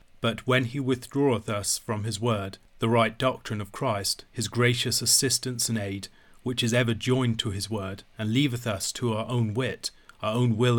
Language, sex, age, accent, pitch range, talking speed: English, male, 30-49, British, 110-125 Hz, 195 wpm